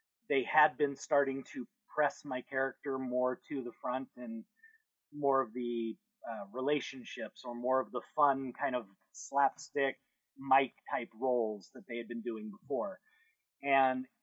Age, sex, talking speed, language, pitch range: 30-49, male, 150 wpm, English, 125-185 Hz